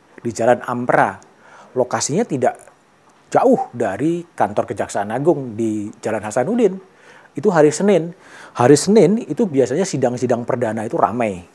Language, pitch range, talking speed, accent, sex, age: Indonesian, 125-200 Hz, 125 wpm, native, male, 40-59